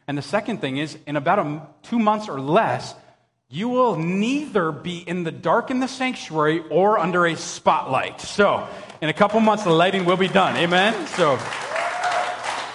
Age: 30-49